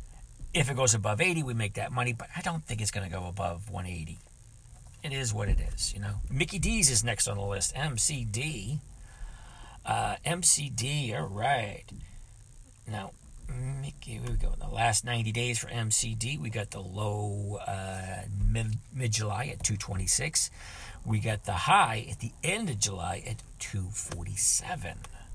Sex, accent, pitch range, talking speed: male, American, 100-125 Hz, 180 wpm